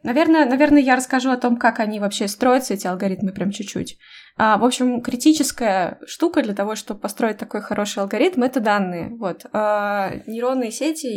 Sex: female